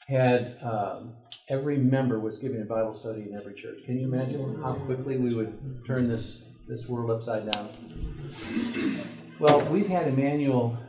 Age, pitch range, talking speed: 50-69, 115-135 Hz, 160 wpm